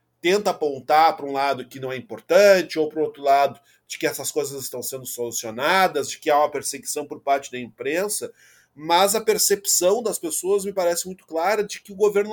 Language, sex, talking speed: Portuguese, male, 210 wpm